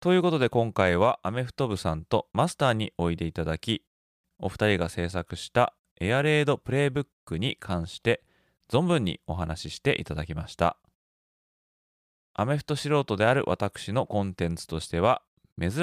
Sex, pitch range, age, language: male, 90-135 Hz, 20-39, Japanese